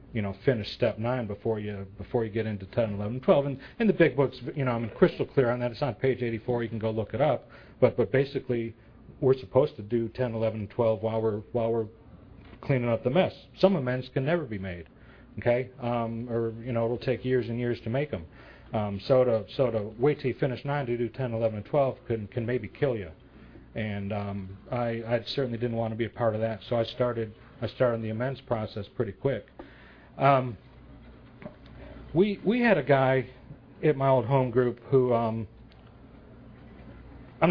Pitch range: 110-130 Hz